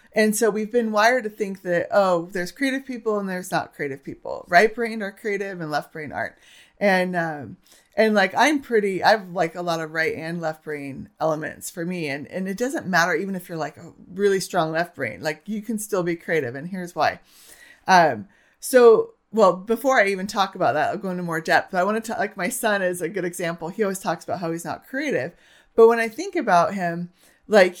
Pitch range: 165-215 Hz